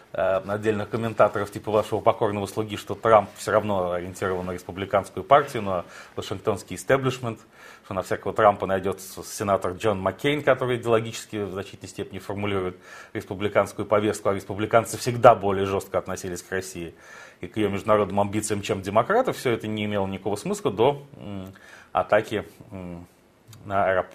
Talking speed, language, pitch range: 140 wpm, Russian, 95-115 Hz